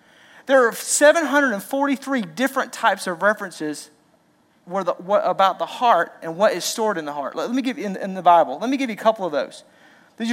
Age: 40-59